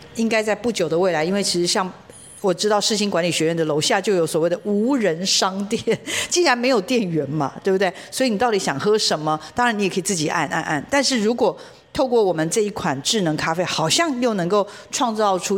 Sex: female